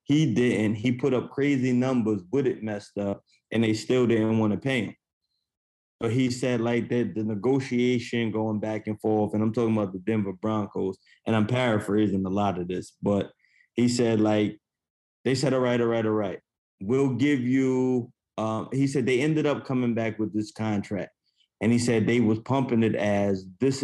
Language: English